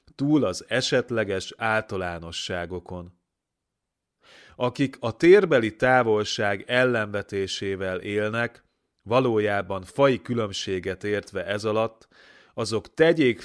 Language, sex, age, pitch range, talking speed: Hungarian, male, 30-49, 100-125 Hz, 80 wpm